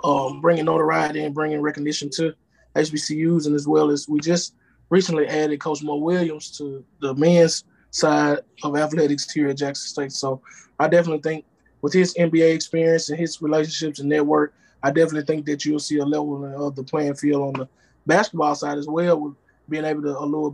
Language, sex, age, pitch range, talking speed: English, male, 20-39, 145-170 Hz, 190 wpm